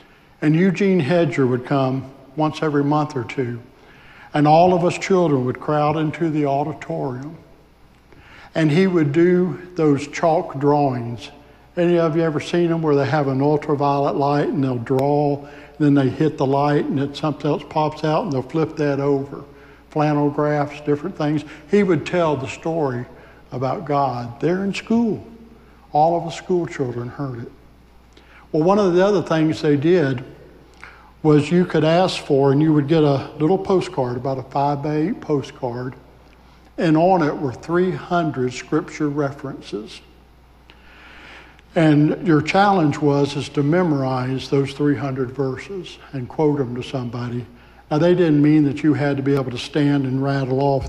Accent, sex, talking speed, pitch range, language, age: American, male, 165 wpm, 135-160 Hz, English, 60-79